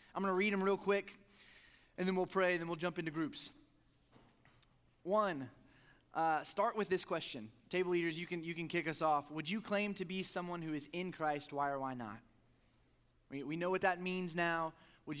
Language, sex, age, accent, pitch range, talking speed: English, male, 20-39, American, 130-170 Hz, 215 wpm